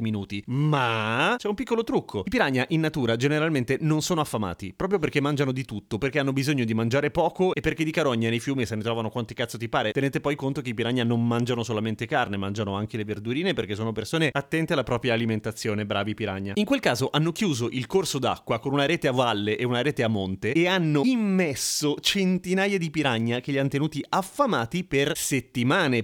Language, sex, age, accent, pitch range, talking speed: Italian, male, 30-49, native, 115-155 Hz, 210 wpm